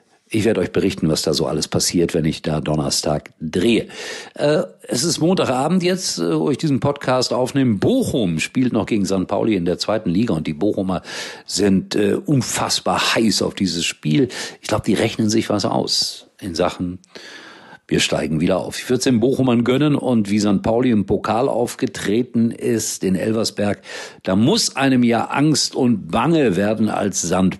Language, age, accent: German, 50-69, German